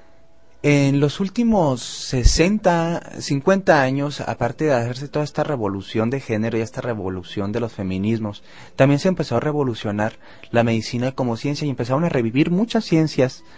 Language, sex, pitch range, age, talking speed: Spanish, male, 110-145 Hz, 30-49, 155 wpm